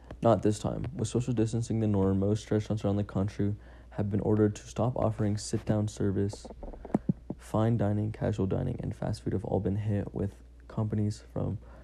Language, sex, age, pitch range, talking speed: English, male, 20-39, 95-110 Hz, 175 wpm